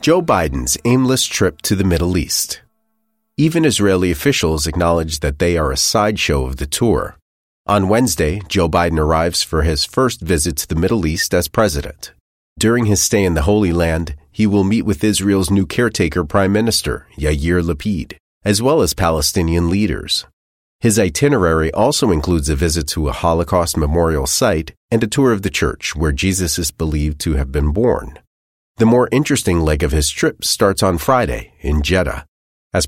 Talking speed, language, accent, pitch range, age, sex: 175 wpm, English, American, 75-100 Hz, 30-49, male